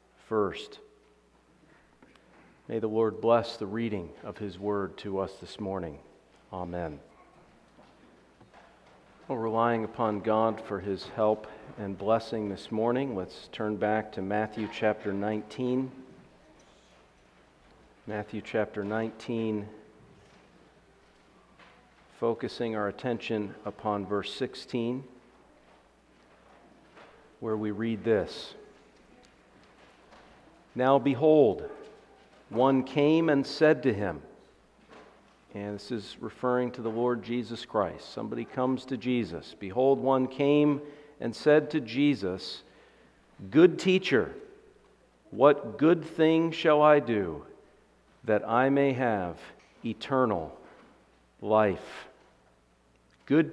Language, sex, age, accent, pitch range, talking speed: English, male, 50-69, American, 105-135 Hz, 100 wpm